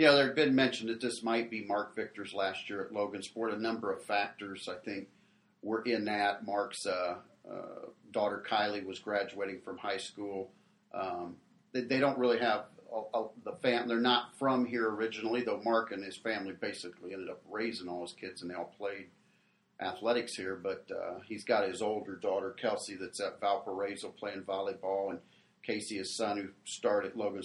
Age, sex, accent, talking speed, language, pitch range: 40-59, male, American, 190 wpm, English, 95-120 Hz